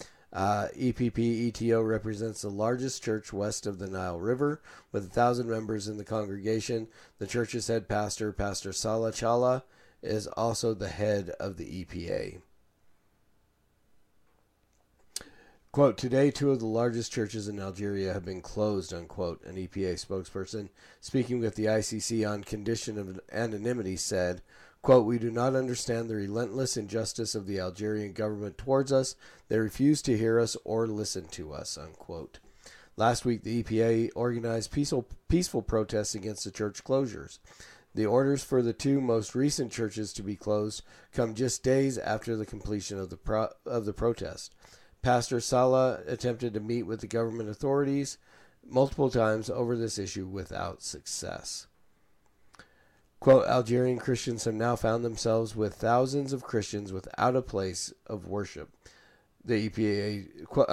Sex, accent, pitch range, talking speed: male, American, 105-120 Hz, 150 wpm